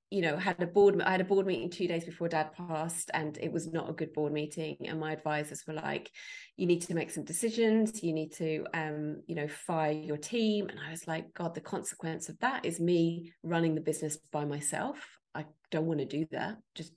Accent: British